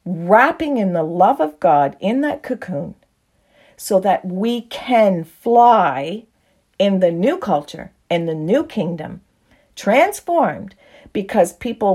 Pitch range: 185-255 Hz